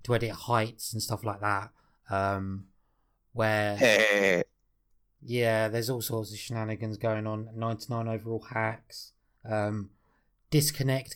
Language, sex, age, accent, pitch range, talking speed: English, male, 20-39, British, 110-145 Hz, 120 wpm